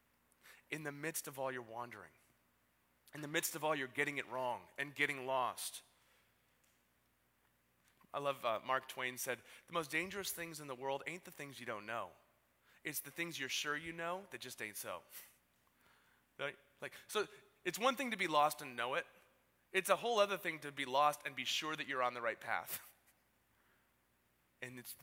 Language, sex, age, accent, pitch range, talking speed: English, male, 30-49, American, 115-175 Hz, 190 wpm